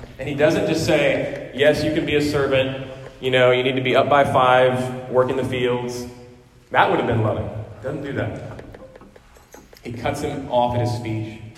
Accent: American